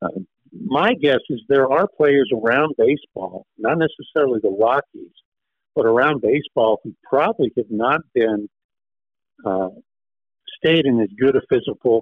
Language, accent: English, American